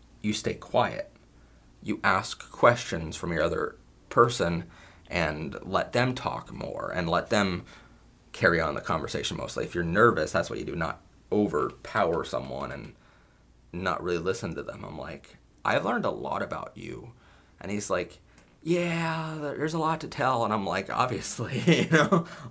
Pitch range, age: 90-125 Hz, 30-49